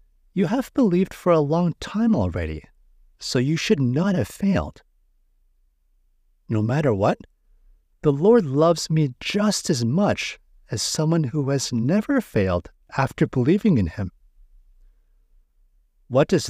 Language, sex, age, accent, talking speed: English, male, 50-69, American, 130 wpm